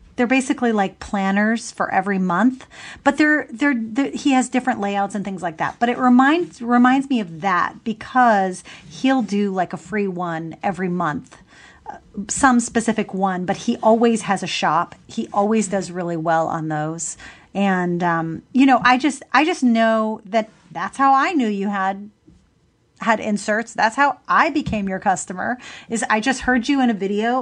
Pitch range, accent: 190-245 Hz, American